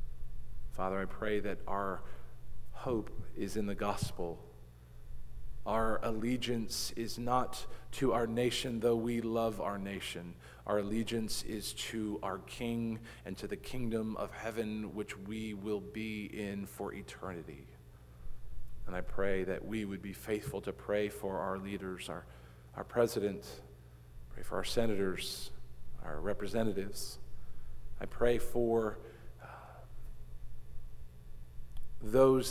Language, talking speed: English, 125 wpm